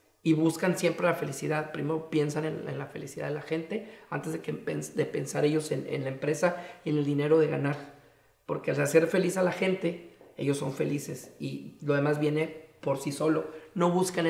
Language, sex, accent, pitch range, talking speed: Spanish, male, Mexican, 155-185 Hz, 205 wpm